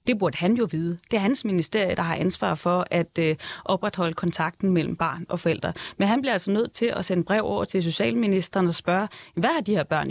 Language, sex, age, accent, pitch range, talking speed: Danish, female, 30-49, native, 175-220 Hz, 235 wpm